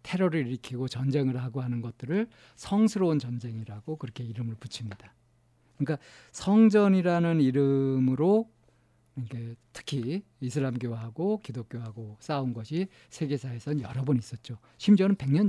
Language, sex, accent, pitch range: Korean, male, native, 115-160 Hz